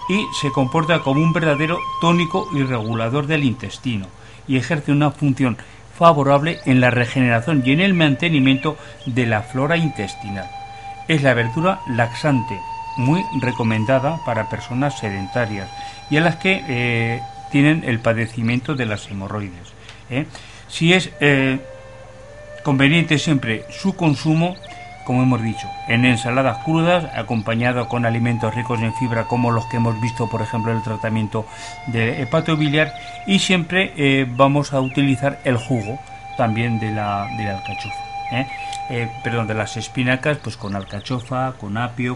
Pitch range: 115-145 Hz